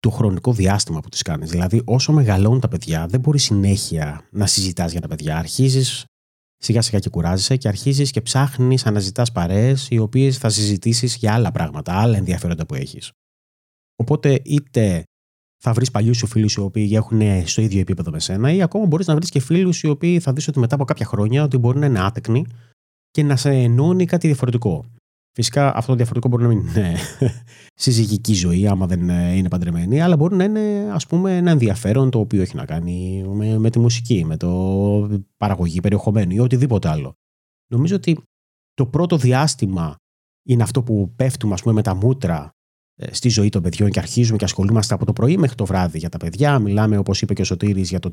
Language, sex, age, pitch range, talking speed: Greek, male, 30-49, 90-130 Hz, 200 wpm